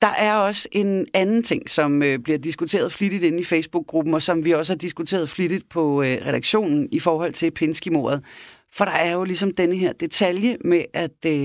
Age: 30-49